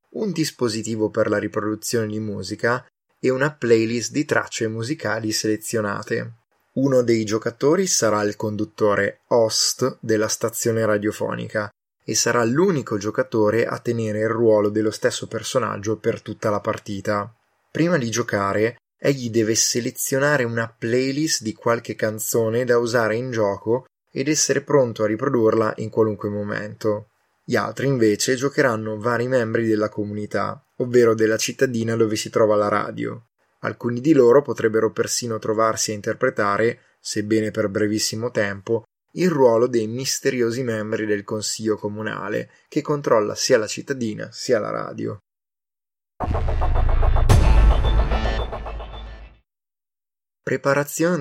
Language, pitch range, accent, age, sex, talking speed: Italian, 105-120 Hz, native, 20-39, male, 125 wpm